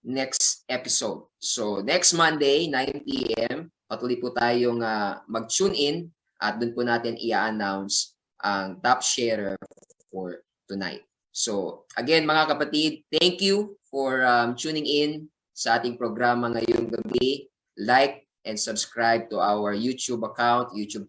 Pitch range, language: 110-140 Hz, Filipino